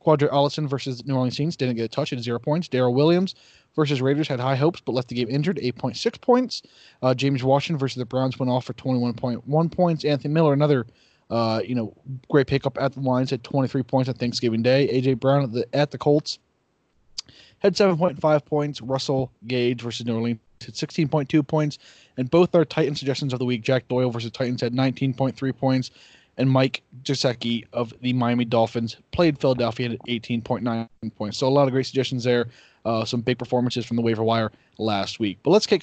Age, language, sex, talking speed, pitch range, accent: 20-39, English, male, 220 wpm, 120-145 Hz, American